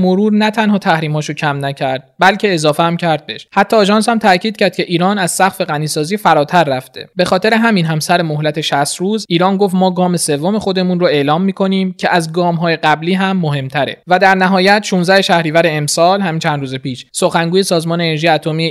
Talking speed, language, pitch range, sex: 195 wpm, Persian, 155-195 Hz, male